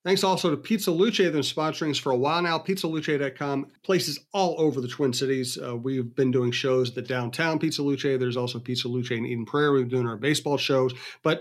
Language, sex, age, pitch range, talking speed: English, male, 40-59, 130-155 Hz, 220 wpm